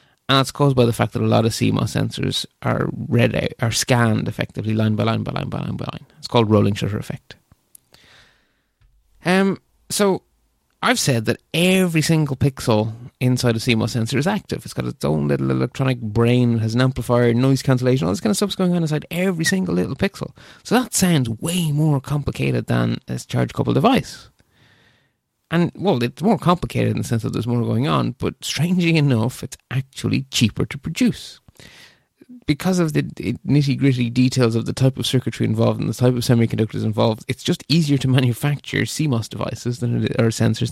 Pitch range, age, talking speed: 115-155 Hz, 30-49, 195 wpm